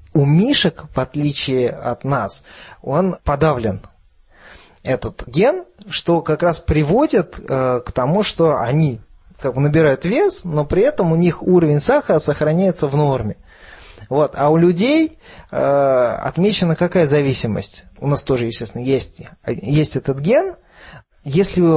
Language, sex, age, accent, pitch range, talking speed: Russian, male, 20-39, native, 130-175 Hz, 130 wpm